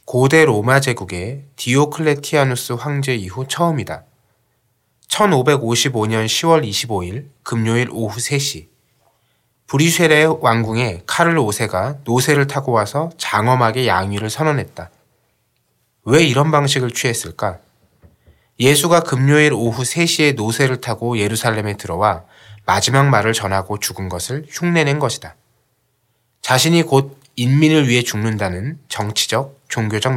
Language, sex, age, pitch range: Korean, male, 20-39, 110-145 Hz